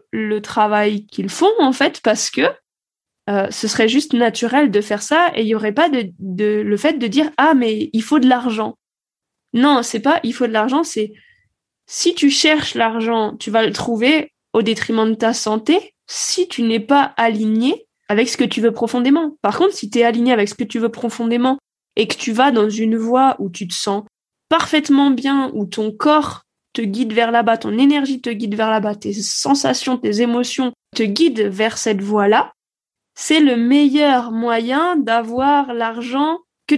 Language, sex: French, female